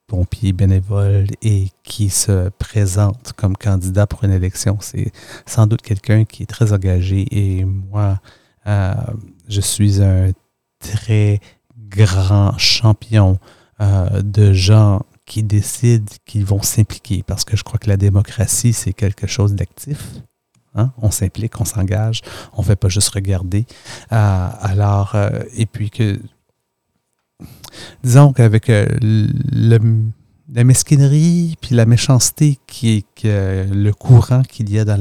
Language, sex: English, male